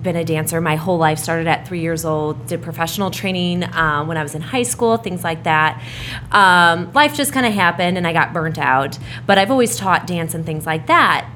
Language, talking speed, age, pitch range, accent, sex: English, 230 wpm, 20-39, 155-185 Hz, American, female